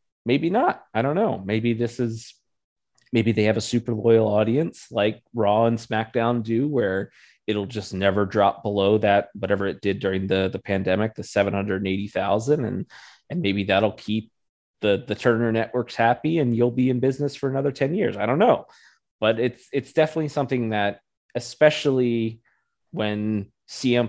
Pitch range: 100-120 Hz